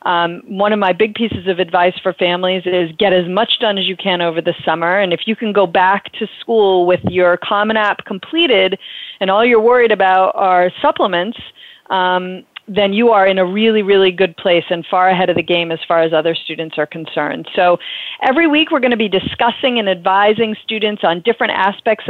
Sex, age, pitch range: female, 40-59, 180-225 Hz